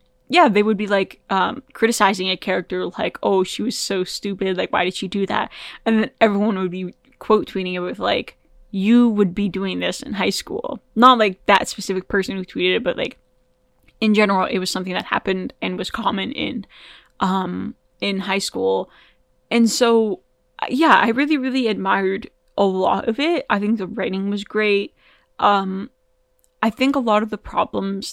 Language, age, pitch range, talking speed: English, 10-29, 190-245 Hz, 190 wpm